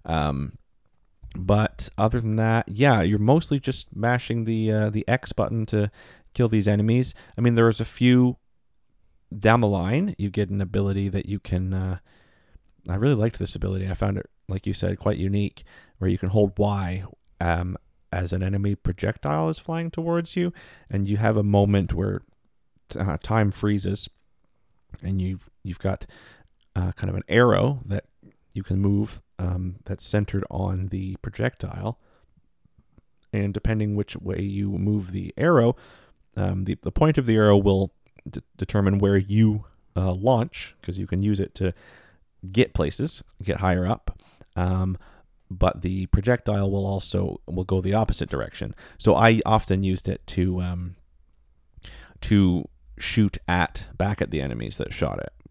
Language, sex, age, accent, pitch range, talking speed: English, male, 30-49, American, 90-110 Hz, 165 wpm